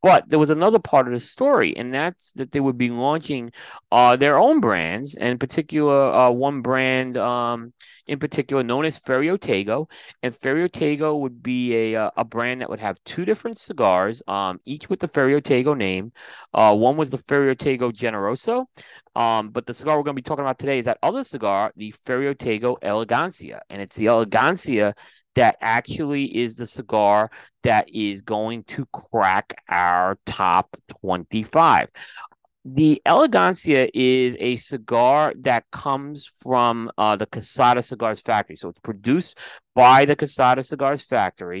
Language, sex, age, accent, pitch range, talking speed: English, male, 30-49, American, 110-140 Hz, 160 wpm